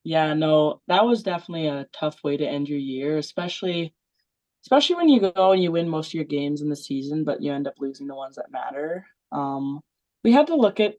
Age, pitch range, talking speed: 20-39, 140-175 Hz, 230 wpm